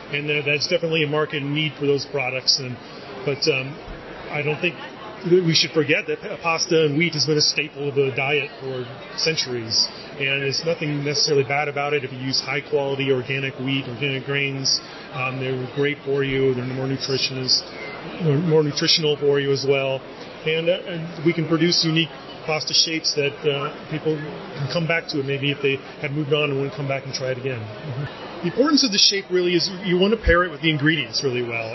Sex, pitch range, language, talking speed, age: male, 135-165 Hz, English, 210 wpm, 30-49